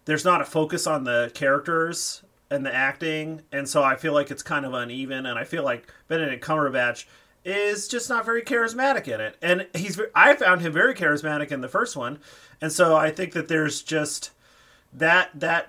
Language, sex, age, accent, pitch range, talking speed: English, male, 30-49, American, 145-185 Hz, 200 wpm